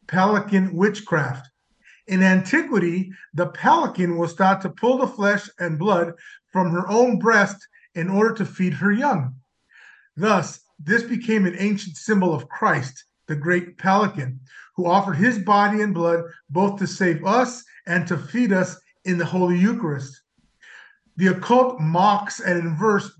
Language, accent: English, American